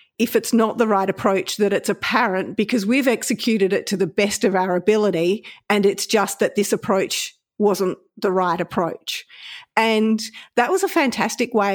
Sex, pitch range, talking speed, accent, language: female, 190-235 Hz, 180 wpm, Australian, English